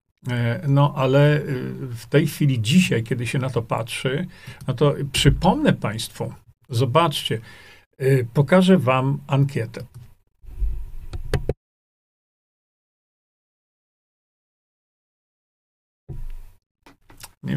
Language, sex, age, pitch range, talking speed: Polish, male, 50-69, 120-155 Hz, 70 wpm